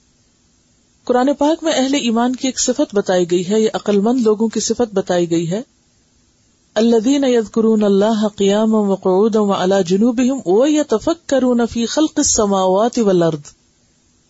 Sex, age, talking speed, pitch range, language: female, 40-59, 95 wpm, 180-245 Hz, Urdu